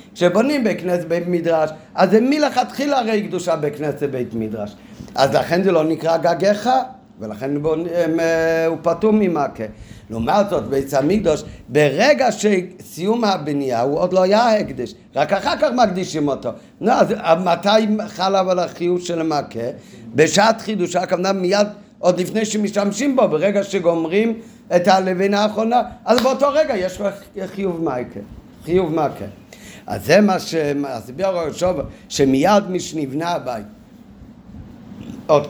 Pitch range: 145-205 Hz